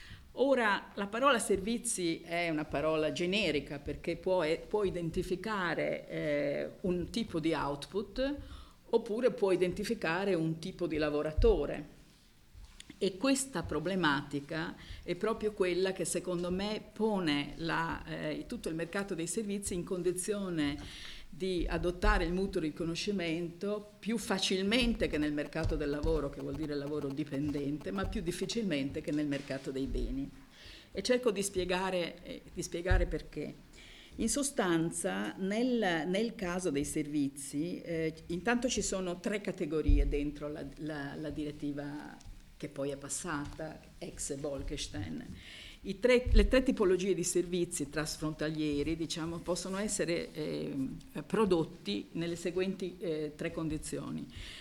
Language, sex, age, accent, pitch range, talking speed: Italian, female, 50-69, native, 150-205 Hz, 120 wpm